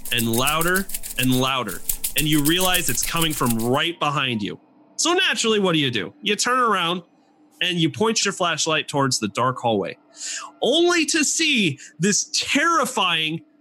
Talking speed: 160 wpm